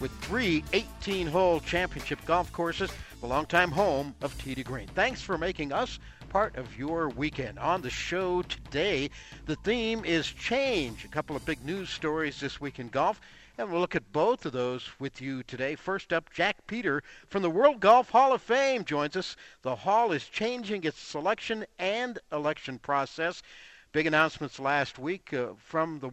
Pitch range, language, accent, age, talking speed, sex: 135-175 Hz, English, American, 50-69, 175 wpm, male